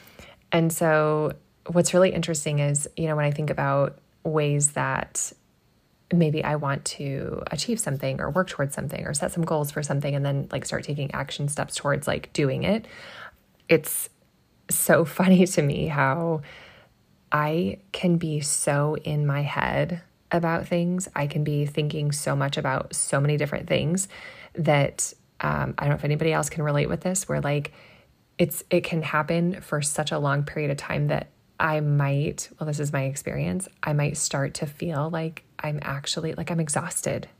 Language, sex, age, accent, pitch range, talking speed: English, female, 20-39, American, 145-165 Hz, 180 wpm